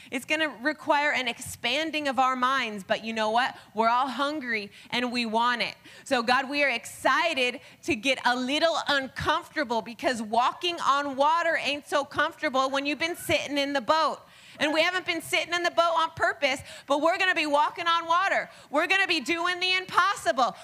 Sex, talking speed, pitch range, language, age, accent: female, 195 wpm, 275-360 Hz, English, 30-49, American